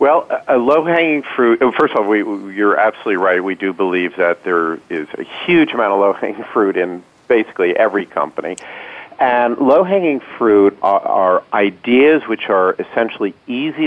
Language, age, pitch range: English, 40-59, 100-145 Hz